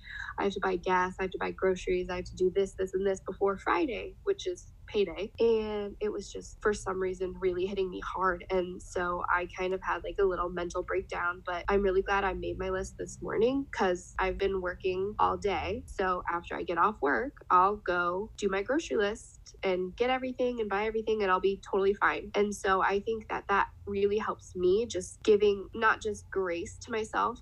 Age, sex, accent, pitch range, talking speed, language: 10-29, female, American, 185-220 Hz, 220 wpm, English